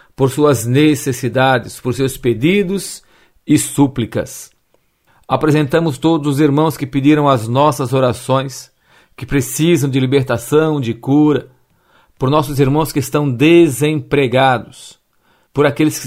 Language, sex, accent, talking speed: Portuguese, male, Brazilian, 115 wpm